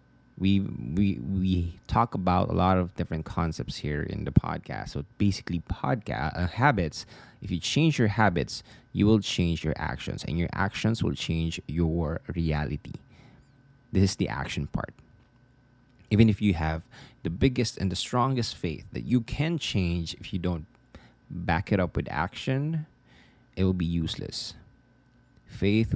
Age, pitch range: 20-39, 85-120 Hz